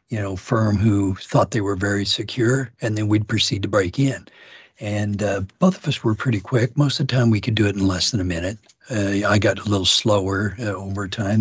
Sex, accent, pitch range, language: male, American, 100-130 Hz, English